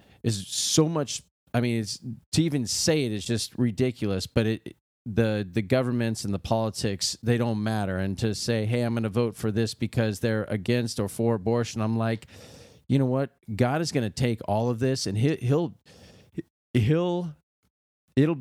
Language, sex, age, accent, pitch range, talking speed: English, male, 40-59, American, 105-130 Hz, 185 wpm